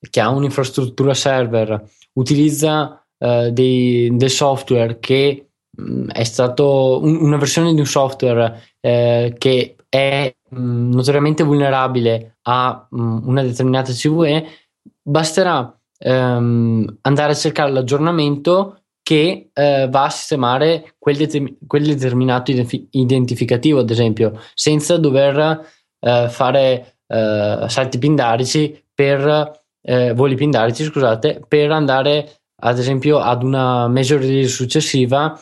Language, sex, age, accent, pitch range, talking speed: Italian, male, 20-39, native, 125-150 Hz, 115 wpm